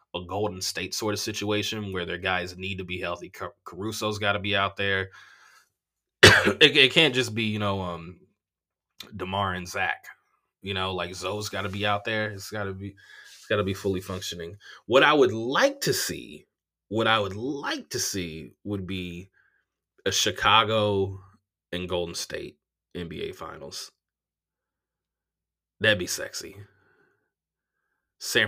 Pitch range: 95-120 Hz